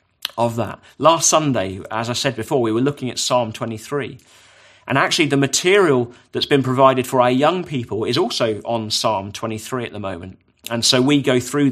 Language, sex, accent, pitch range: English, male, British, 120-155 Hz